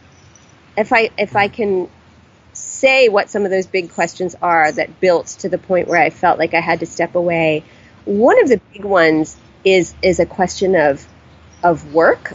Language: English